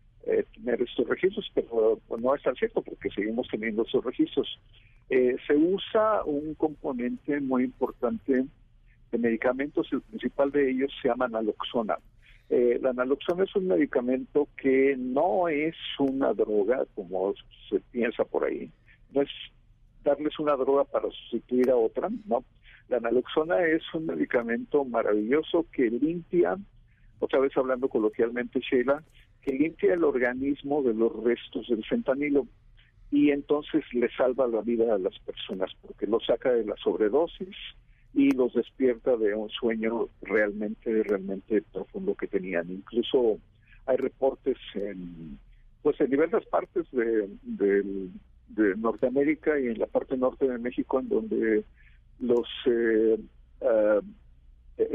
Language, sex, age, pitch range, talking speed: Spanish, male, 50-69, 115-160 Hz, 140 wpm